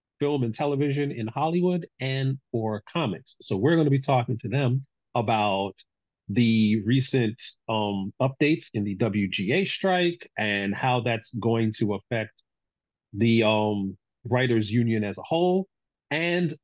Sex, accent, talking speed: male, American, 140 wpm